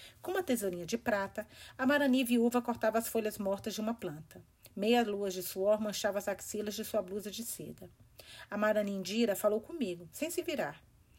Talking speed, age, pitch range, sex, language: 180 wpm, 40-59, 195-240 Hz, female, Portuguese